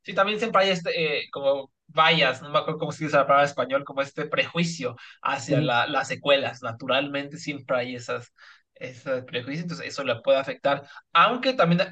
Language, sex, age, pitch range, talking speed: Spanish, male, 20-39, 140-180 Hz, 190 wpm